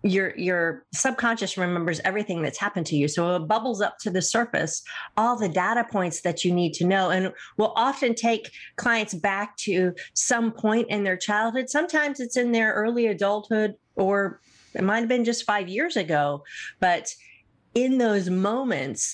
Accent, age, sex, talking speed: American, 40-59, female, 170 wpm